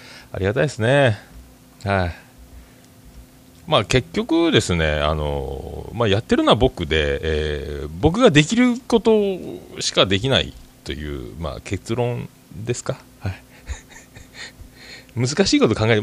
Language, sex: Japanese, male